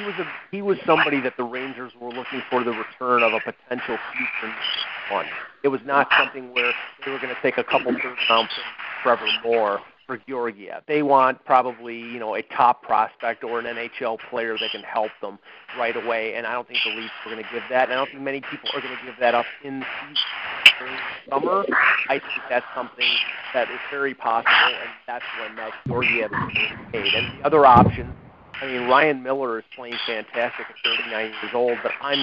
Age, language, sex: 40-59, English, male